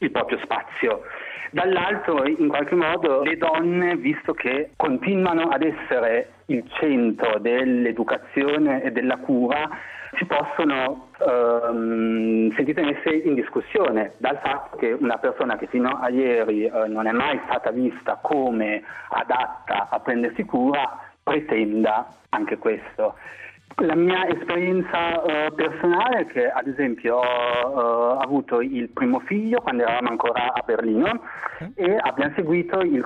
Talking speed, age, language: 135 wpm, 40-59, Italian